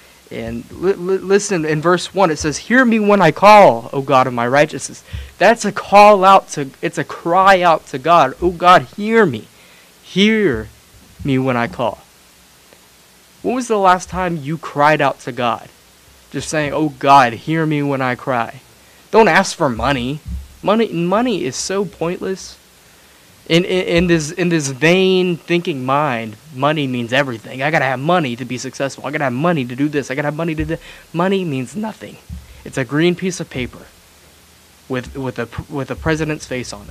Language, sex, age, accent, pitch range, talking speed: English, male, 30-49, American, 125-175 Hz, 190 wpm